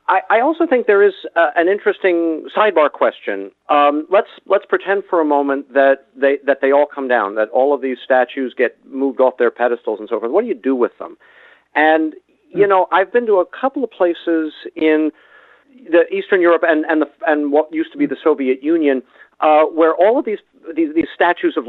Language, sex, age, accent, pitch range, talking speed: English, male, 50-69, American, 130-180 Hz, 215 wpm